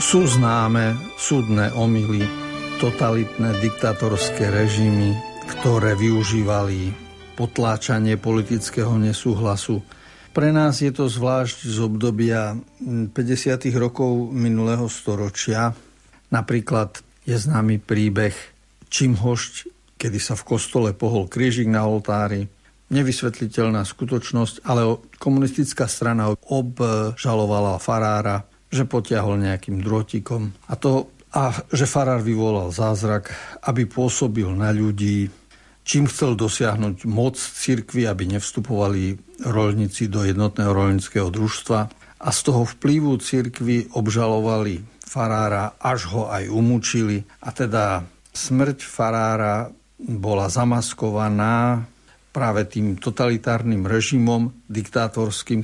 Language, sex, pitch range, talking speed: Slovak, male, 105-125 Hz, 100 wpm